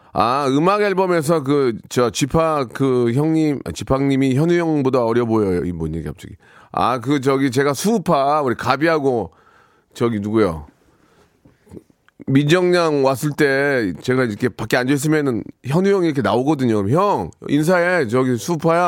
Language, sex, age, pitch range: Korean, male, 40-59, 125-175 Hz